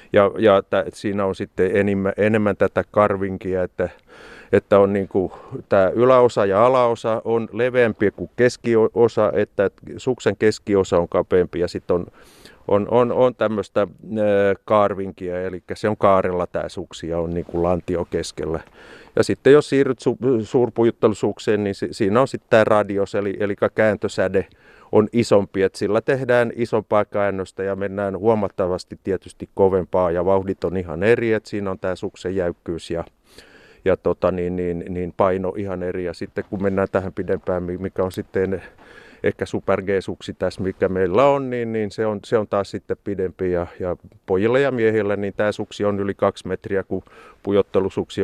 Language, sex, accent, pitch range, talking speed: Finnish, male, native, 95-110 Hz, 165 wpm